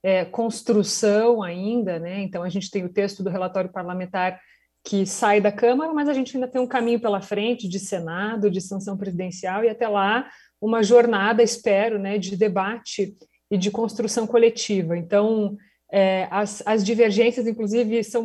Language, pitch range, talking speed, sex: Portuguese, 200-240 Hz, 170 wpm, female